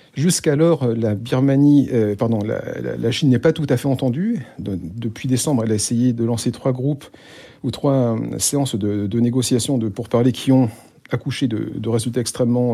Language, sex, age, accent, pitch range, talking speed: French, male, 50-69, French, 115-140 Hz, 200 wpm